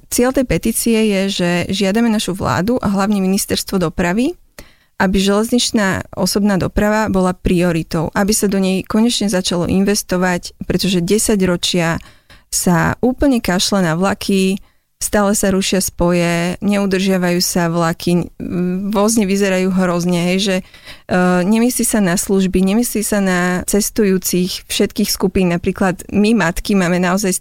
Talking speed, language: 135 wpm, Slovak